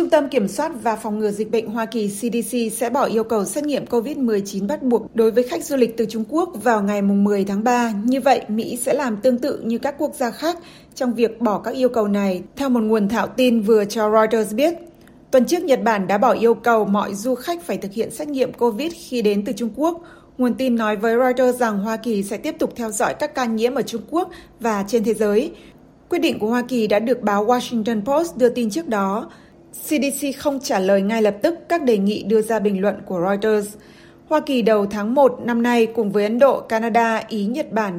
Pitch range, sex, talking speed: 215-265 Hz, female, 240 wpm